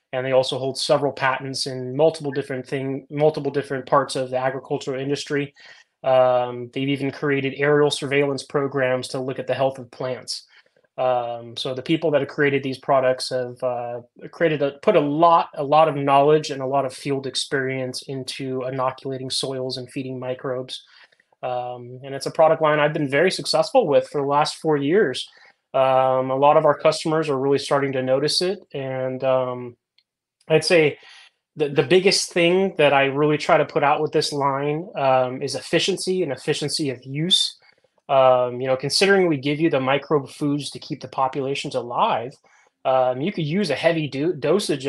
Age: 20-39